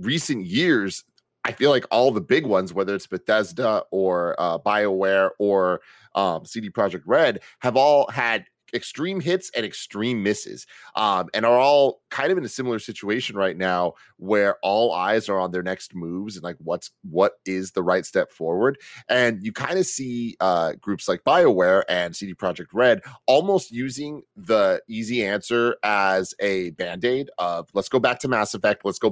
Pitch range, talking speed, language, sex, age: 95-120 Hz, 180 wpm, English, male, 30-49